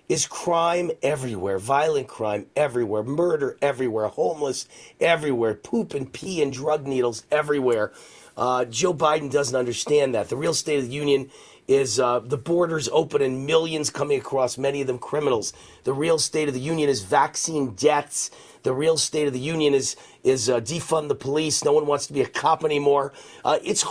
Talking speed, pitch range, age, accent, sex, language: 185 wpm, 130-170 Hz, 40-59, American, male, English